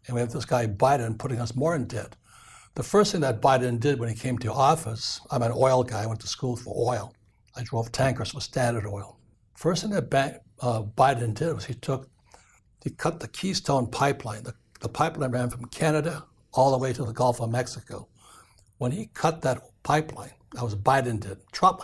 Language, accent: English, American